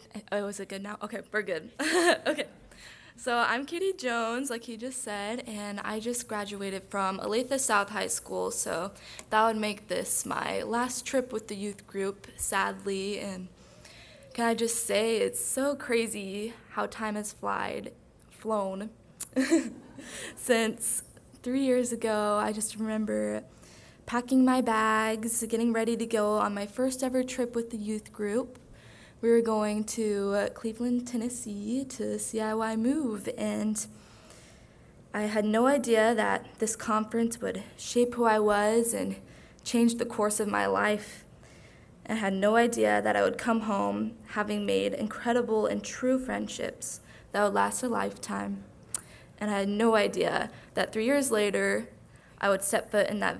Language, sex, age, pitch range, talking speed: English, female, 20-39, 205-235 Hz, 155 wpm